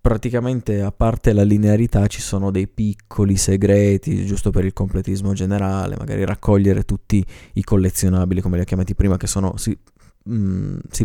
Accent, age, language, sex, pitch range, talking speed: native, 20-39, Italian, male, 95-115 Hz, 150 wpm